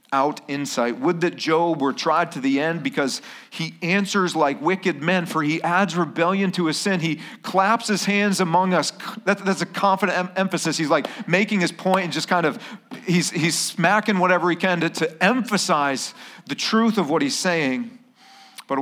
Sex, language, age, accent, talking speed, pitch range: male, English, 40-59, American, 190 wpm, 160-220 Hz